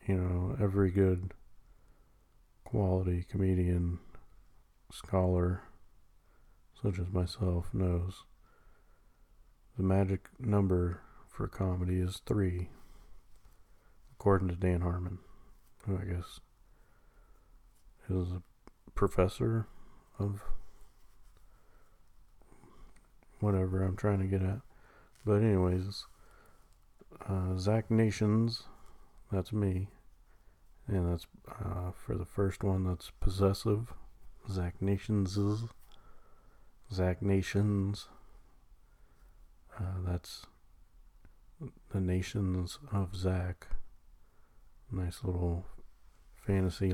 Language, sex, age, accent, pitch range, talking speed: English, male, 40-59, American, 90-100 Hz, 80 wpm